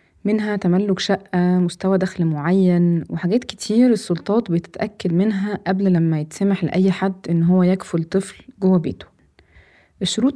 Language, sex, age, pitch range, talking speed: Arabic, female, 20-39, 170-215 Hz, 135 wpm